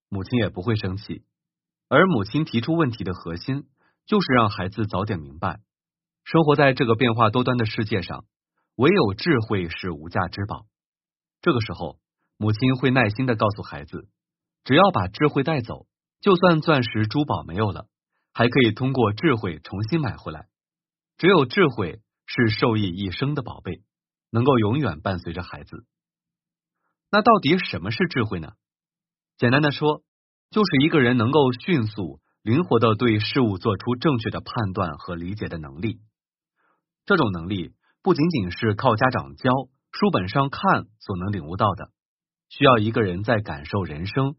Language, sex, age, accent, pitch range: Chinese, male, 30-49, native, 100-150 Hz